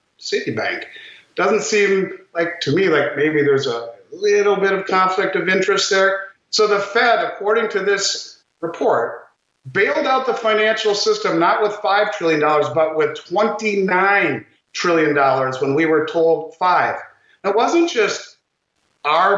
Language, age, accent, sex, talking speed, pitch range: English, 50-69, American, male, 150 wpm, 165-230 Hz